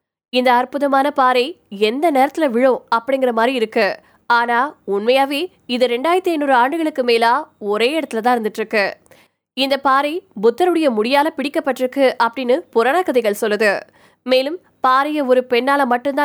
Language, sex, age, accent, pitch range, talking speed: Tamil, female, 20-39, native, 230-285 Hz, 40 wpm